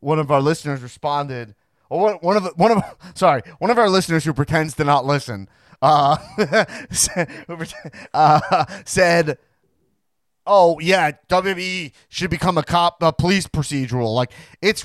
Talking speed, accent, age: 140 wpm, American, 30-49